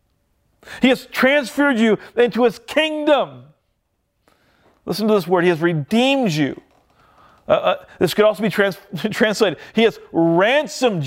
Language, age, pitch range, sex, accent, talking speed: English, 40-59, 135-205 Hz, male, American, 135 wpm